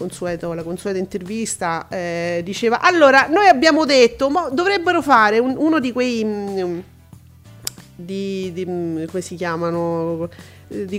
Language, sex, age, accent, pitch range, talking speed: Italian, female, 40-59, native, 195-280 Hz, 135 wpm